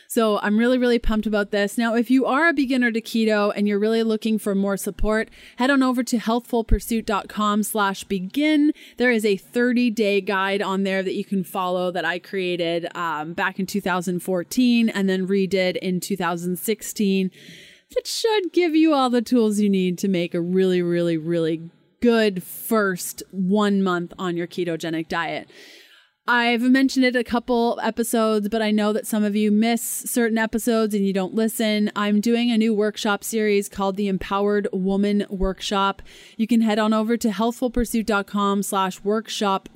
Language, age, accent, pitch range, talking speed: English, 20-39, American, 195-230 Hz, 170 wpm